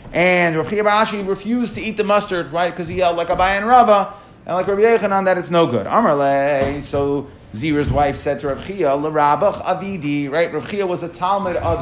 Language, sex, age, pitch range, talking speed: English, male, 30-49, 140-185 Hz, 205 wpm